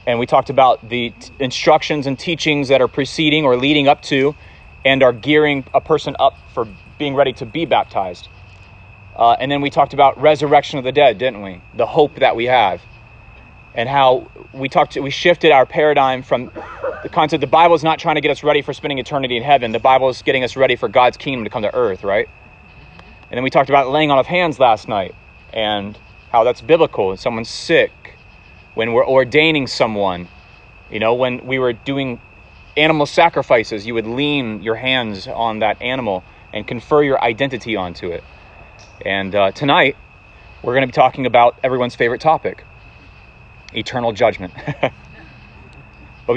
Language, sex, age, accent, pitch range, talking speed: English, male, 30-49, American, 110-145 Hz, 185 wpm